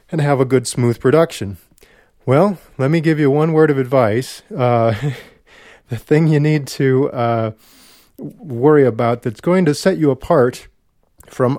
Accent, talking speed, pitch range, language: American, 160 wpm, 115-150 Hz, English